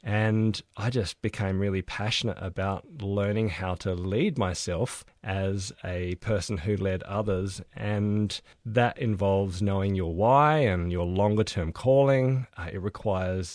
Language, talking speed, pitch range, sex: English, 135 wpm, 95-115 Hz, male